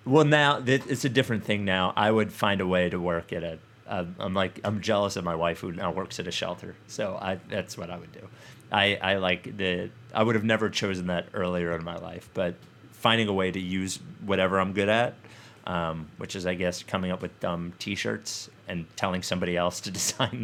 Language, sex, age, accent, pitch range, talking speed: English, male, 30-49, American, 90-110 Hz, 230 wpm